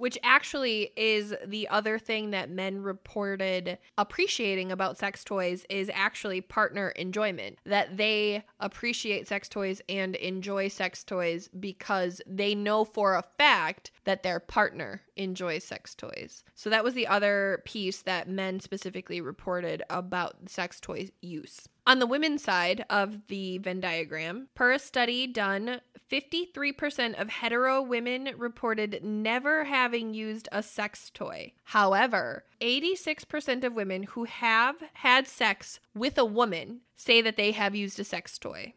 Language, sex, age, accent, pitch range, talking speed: English, female, 20-39, American, 190-235 Hz, 145 wpm